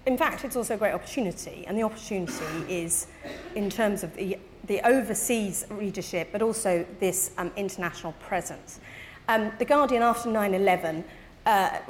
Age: 40-59